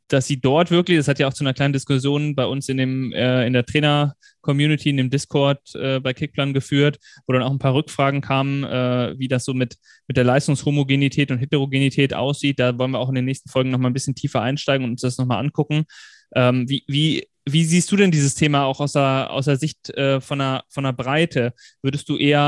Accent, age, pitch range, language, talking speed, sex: German, 20-39, 130-150 Hz, German, 220 wpm, male